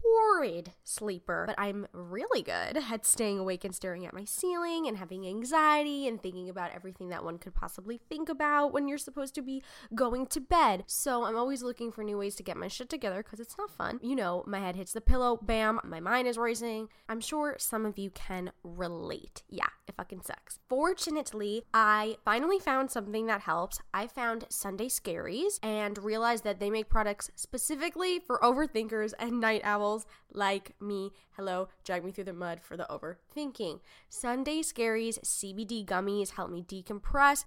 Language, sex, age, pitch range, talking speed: English, female, 10-29, 200-275 Hz, 185 wpm